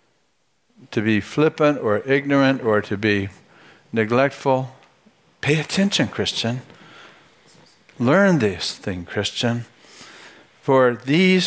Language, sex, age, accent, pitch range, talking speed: English, male, 60-79, American, 120-155 Hz, 90 wpm